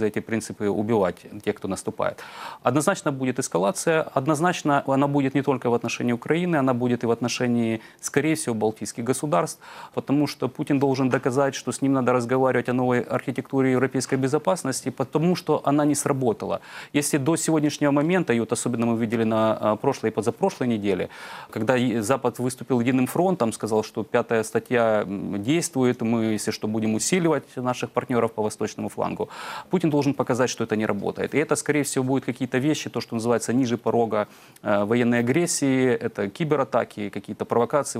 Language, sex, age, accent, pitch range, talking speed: Russian, male, 30-49, native, 115-145 Hz, 165 wpm